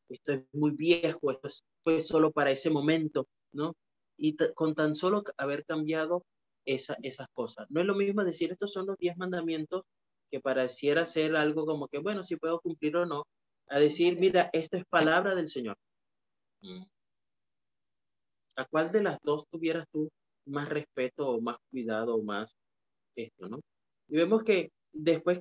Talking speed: 175 wpm